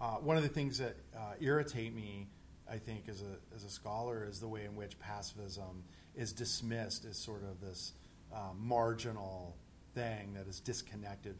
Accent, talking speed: American, 180 wpm